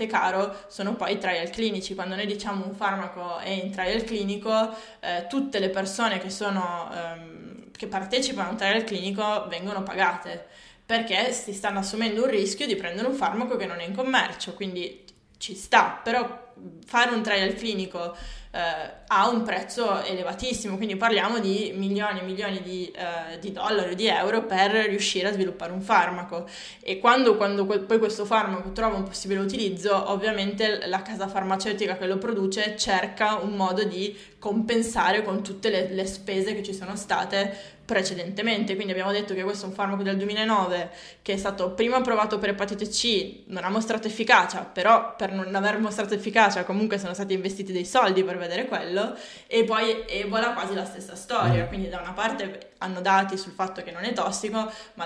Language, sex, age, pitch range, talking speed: Italian, female, 20-39, 185-220 Hz, 185 wpm